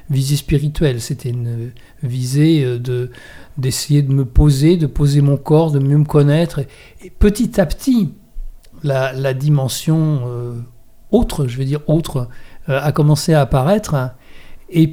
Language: French